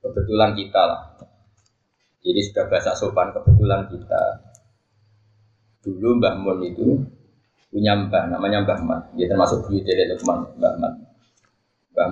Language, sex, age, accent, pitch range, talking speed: Indonesian, male, 20-39, native, 100-120 Hz, 130 wpm